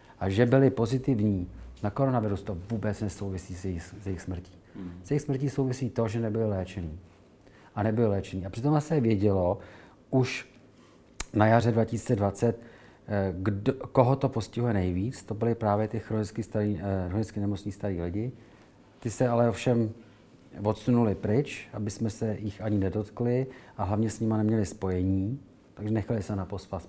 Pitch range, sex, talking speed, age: 95-120 Hz, male, 150 wpm, 40-59